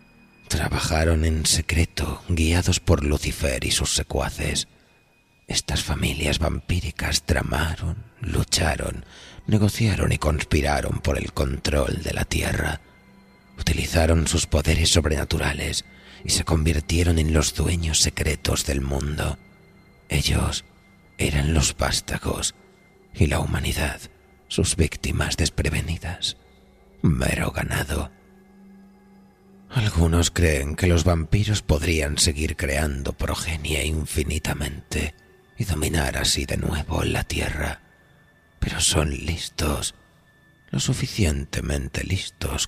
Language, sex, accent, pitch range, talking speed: Spanish, male, Spanish, 75-90 Hz, 100 wpm